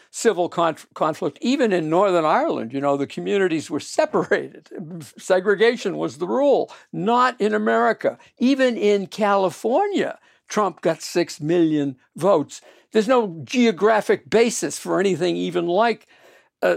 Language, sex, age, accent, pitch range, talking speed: English, male, 60-79, American, 165-225 Hz, 130 wpm